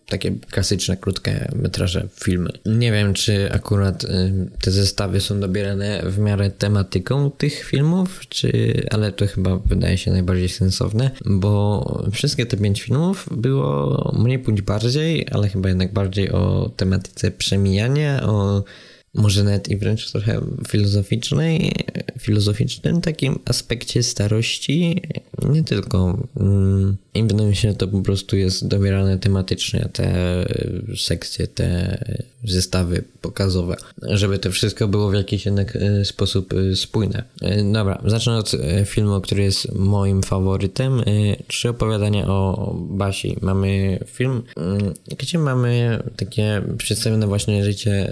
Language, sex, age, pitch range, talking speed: Polish, male, 20-39, 95-120 Hz, 125 wpm